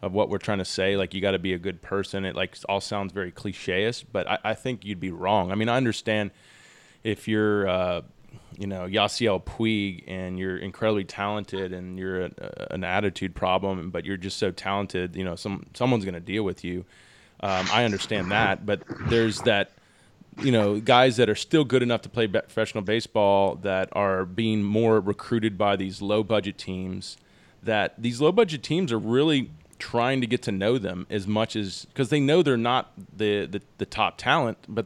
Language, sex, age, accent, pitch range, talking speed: English, male, 20-39, American, 95-115 Hz, 205 wpm